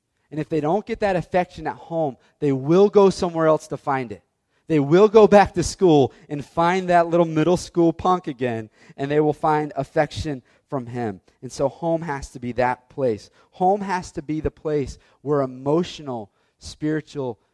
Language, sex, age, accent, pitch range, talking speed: English, male, 30-49, American, 120-155 Hz, 190 wpm